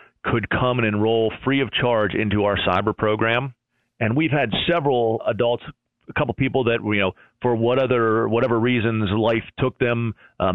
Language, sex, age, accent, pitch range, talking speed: English, male, 40-59, American, 110-130 Hz, 180 wpm